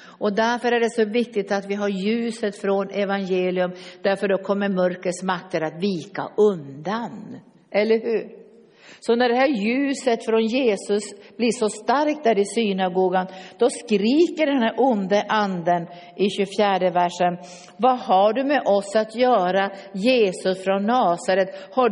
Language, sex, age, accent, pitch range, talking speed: Swedish, female, 50-69, native, 185-245 Hz, 150 wpm